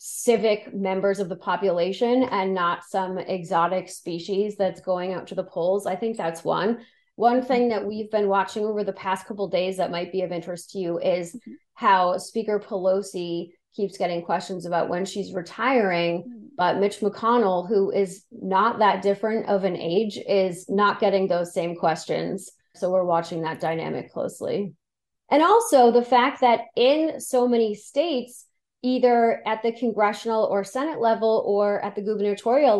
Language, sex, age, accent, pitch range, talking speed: English, female, 30-49, American, 185-230 Hz, 170 wpm